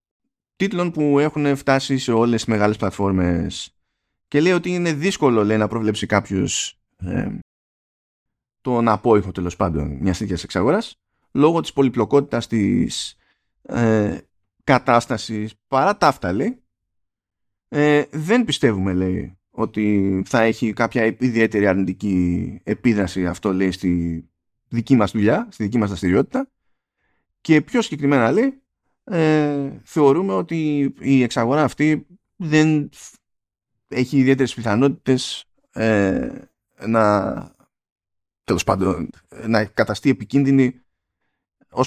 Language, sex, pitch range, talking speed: Greek, male, 105-150 Hz, 110 wpm